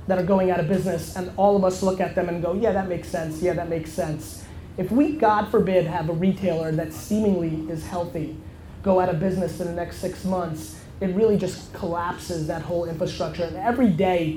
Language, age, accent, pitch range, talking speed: English, 20-39, American, 175-210 Hz, 220 wpm